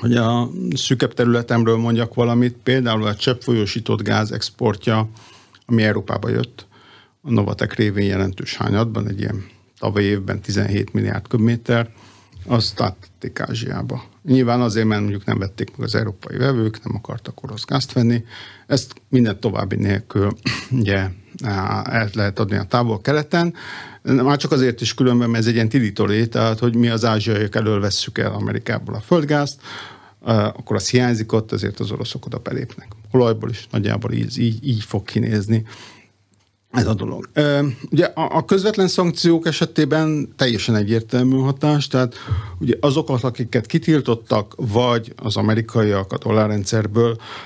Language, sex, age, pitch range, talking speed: Hungarian, male, 50-69, 105-125 Hz, 140 wpm